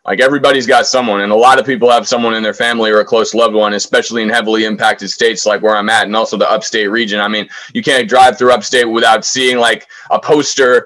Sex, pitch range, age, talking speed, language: male, 105-130 Hz, 20-39, 250 wpm, English